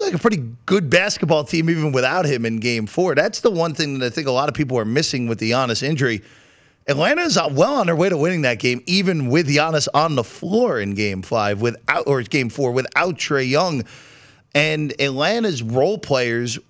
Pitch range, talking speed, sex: 120-160 Hz, 210 wpm, male